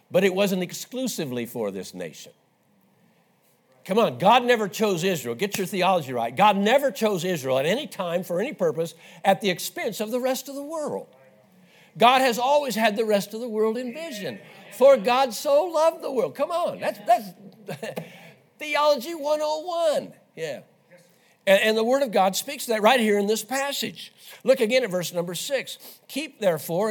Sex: male